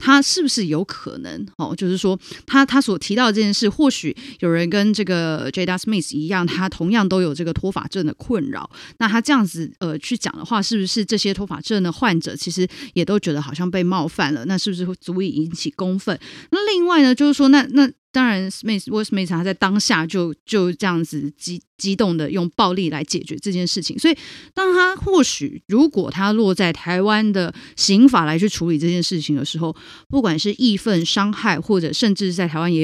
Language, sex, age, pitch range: Chinese, female, 30-49, 170-235 Hz